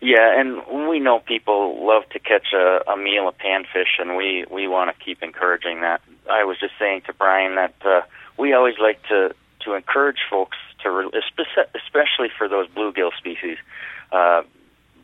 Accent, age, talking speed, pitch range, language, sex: American, 40-59, 170 wpm, 90-110 Hz, English, male